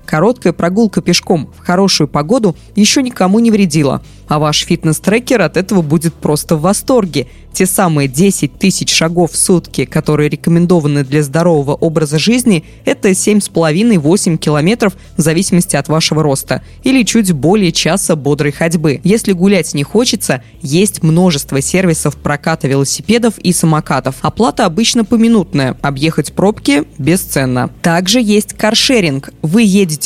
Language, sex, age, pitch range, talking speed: Russian, female, 20-39, 155-205 Hz, 135 wpm